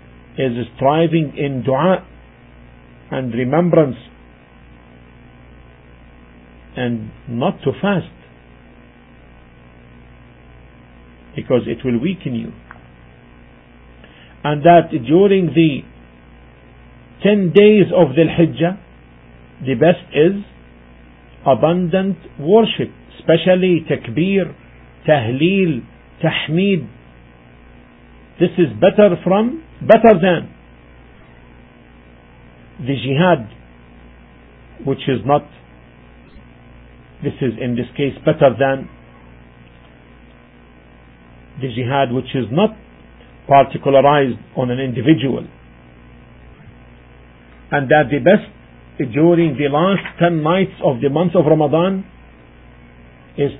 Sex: male